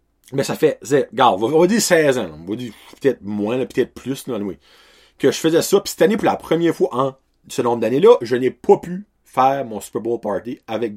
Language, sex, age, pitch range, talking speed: French, male, 30-49, 135-215 Hz, 235 wpm